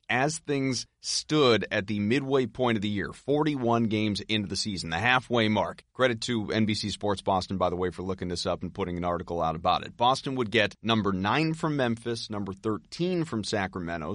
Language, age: English, 30-49